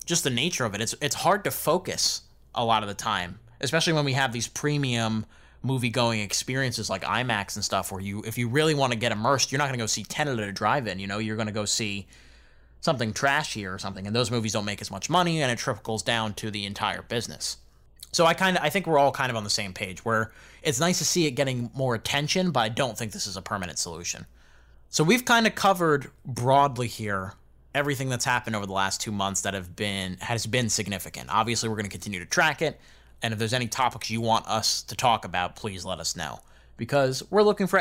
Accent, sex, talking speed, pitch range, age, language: American, male, 245 wpm, 100-135 Hz, 20-39, English